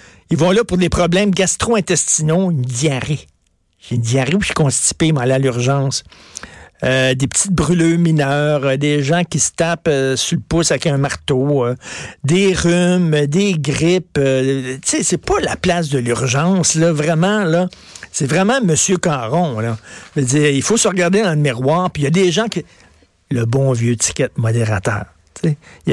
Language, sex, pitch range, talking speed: French, male, 130-180 Hz, 190 wpm